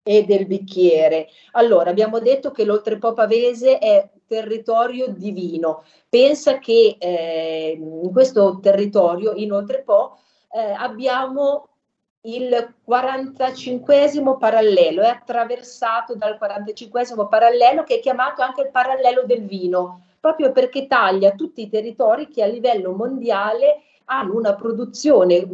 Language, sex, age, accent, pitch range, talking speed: Italian, female, 40-59, native, 195-255 Hz, 130 wpm